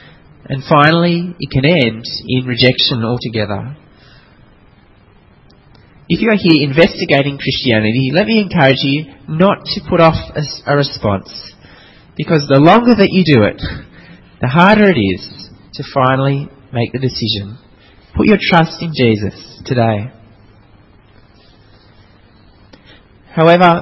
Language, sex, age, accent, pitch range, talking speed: English, male, 30-49, Australian, 115-175 Hz, 120 wpm